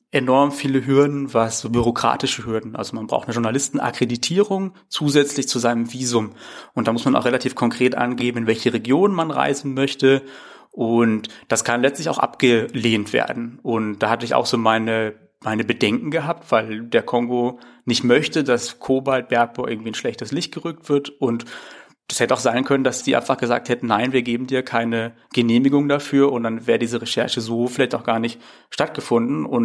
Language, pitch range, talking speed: German, 115-135 Hz, 185 wpm